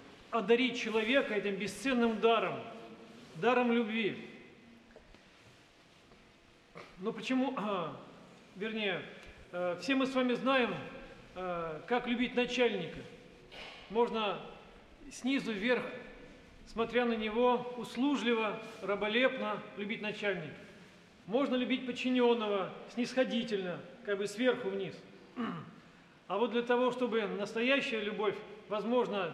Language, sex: Russian, male